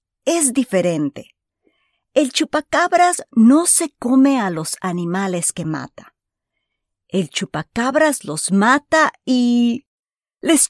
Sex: female